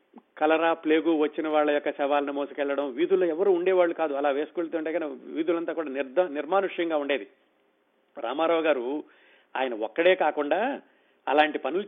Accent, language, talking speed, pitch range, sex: native, Telugu, 135 wpm, 150-185 Hz, male